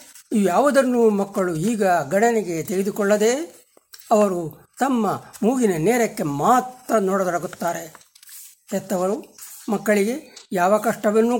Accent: native